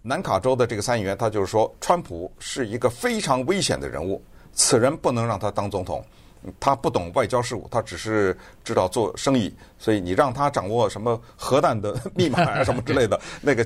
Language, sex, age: Chinese, male, 50-69